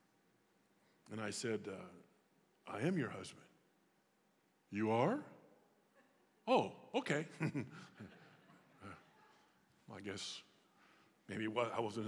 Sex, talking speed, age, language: male, 85 wpm, 50-69, English